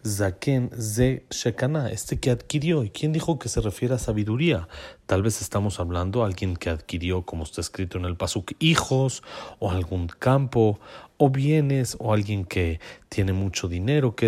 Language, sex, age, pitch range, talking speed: Spanish, male, 40-59, 95-130 Hz, 170 wpm